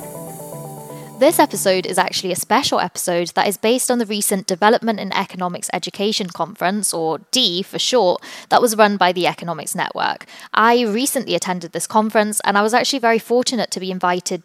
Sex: female